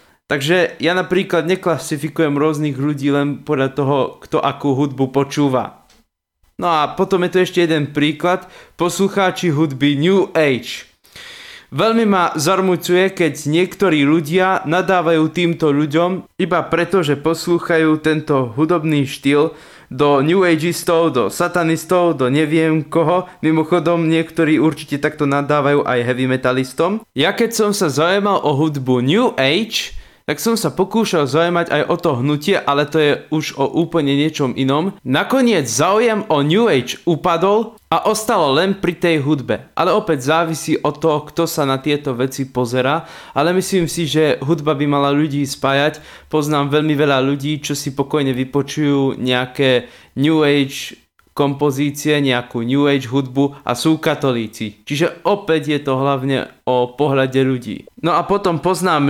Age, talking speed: 20-39, 150 wpm